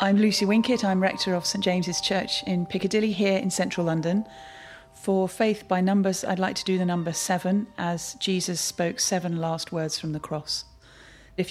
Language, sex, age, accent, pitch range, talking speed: English, female, 40-59, British, 160-190 Hz, 190 wpm